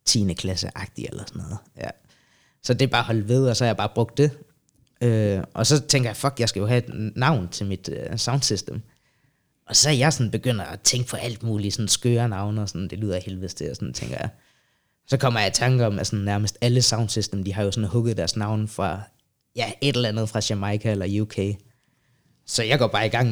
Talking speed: 235 wpm